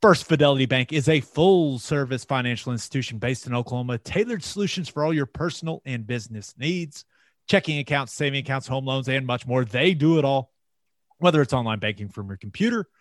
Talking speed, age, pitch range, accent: 185 wpm, 30-49, 120-160 Hz, American